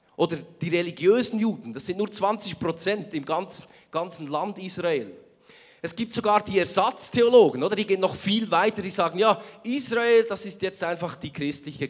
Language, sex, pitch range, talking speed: German, male, 140-195 Hz, 165 wpm